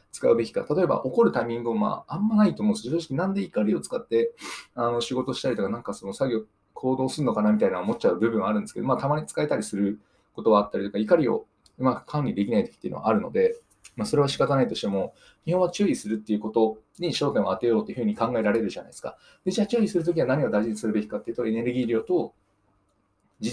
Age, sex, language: 20-39, male, Japanese